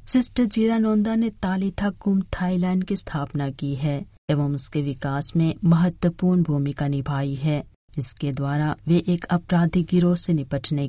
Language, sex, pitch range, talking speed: Hindi, female, 140-175 Hz, 150 wpm